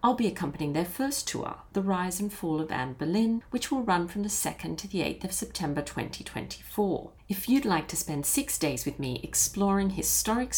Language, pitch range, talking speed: English, 170-225 Hz, 205 wpm